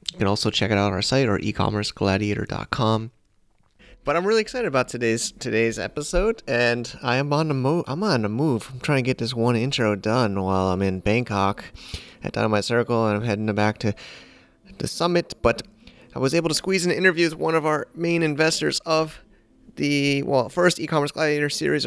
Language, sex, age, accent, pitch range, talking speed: English, male, 30-49, American, 110-150 Hz, 205 wpm